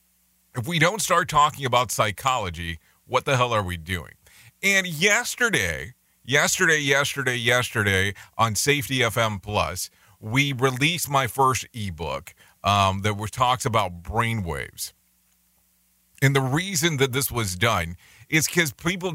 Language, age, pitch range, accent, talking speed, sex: English, 40-59, 95-140 Hz, American, 130 wpm, male